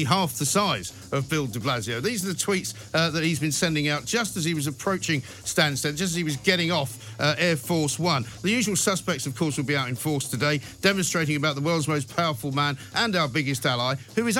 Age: 50-69